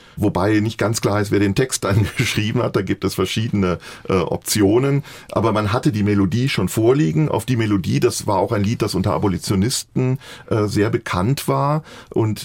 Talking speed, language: 195 wpm, German